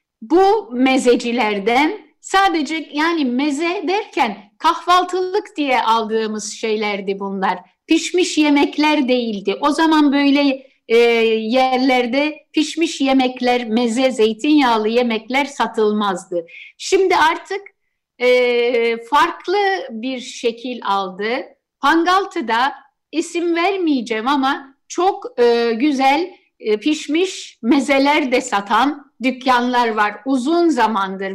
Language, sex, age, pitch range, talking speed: Turkish, female, 60-79, 240-320 Hz, 90 wpm